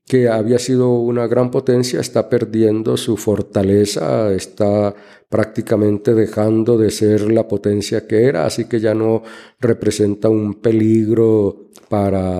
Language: Spanish